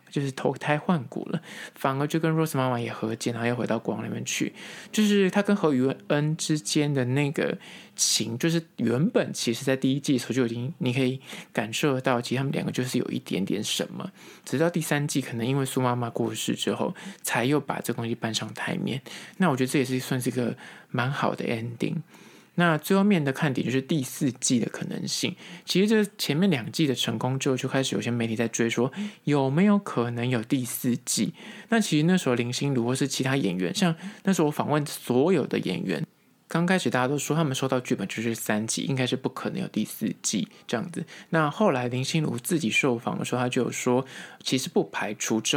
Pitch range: 120-165 Hz